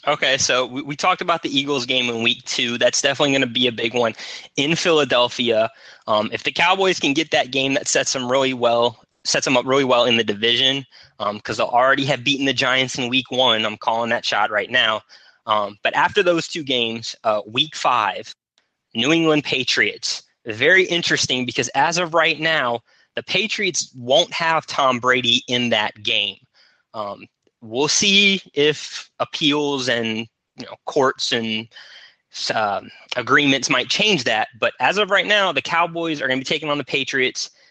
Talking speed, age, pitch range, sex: 190 wpm, 20-39, 120-150 Hz, male